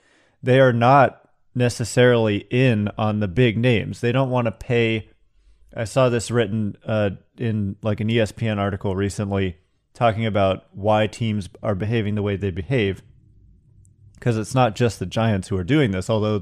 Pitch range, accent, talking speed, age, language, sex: 105-125 Hz, American, 170 wpm, 30-49, English, male